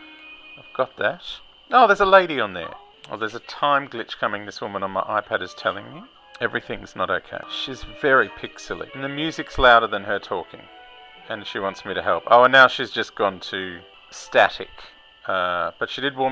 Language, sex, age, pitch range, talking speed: English, male, 40-59, 120-185 Hz, 200 wpm